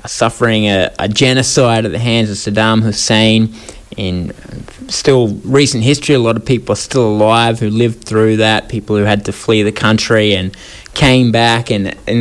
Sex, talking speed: male, 180 wpm